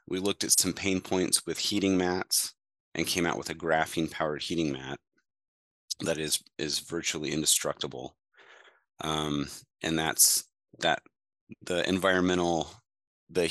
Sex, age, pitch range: male, 30-49, 80-90 Hz